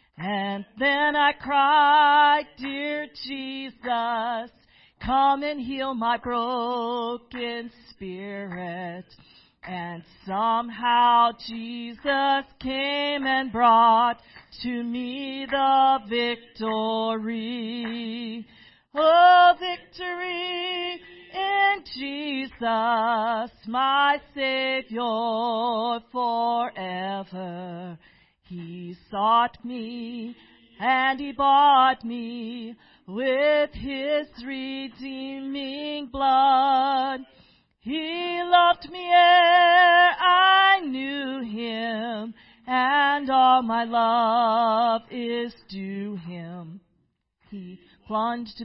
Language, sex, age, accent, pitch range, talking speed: English, female, 40-59, American, 230-280 Hz, 70 wpm